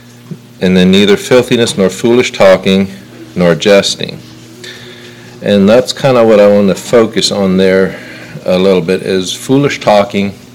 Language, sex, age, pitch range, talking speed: English, male, 50-69, 90-120 Hz, 150 wpm